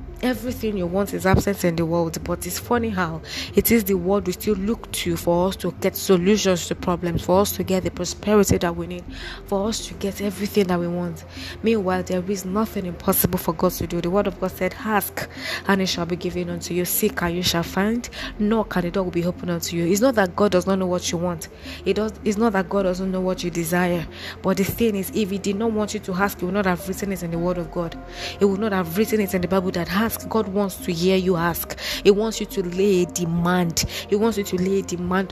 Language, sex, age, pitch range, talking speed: English, female, 20-39, 175-200 Hz, 260 wpm